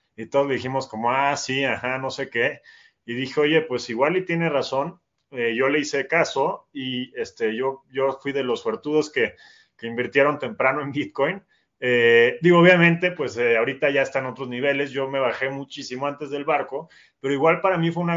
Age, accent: 30-49, Mexican